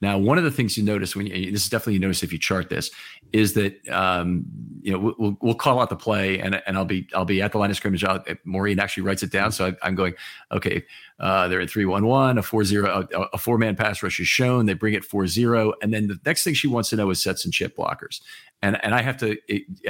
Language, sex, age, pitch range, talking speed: English, male, 40-59, 95-115 Hz, 285 wpm